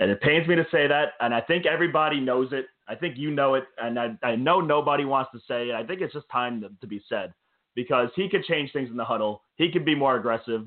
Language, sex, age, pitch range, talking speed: English, male, 30-49, 120-150 Hz, 275 wpm